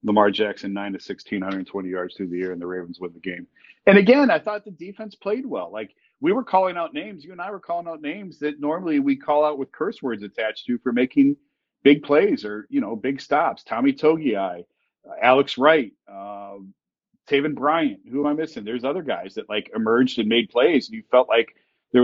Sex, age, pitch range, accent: male, 40-59, 110-155 Hz, American